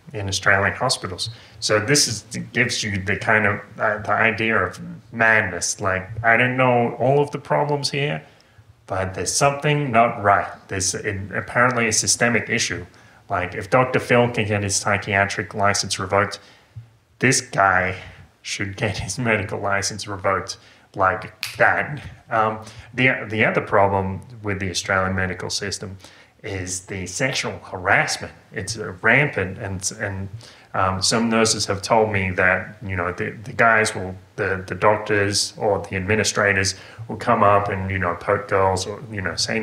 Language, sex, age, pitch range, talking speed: English, male, 30-49, 95-115 Hz, 160 wpm